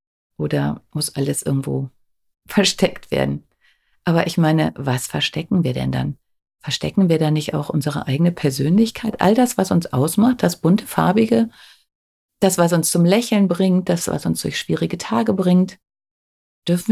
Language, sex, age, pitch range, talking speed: German, female, 50-69, 145-200 Hz, 155 wpm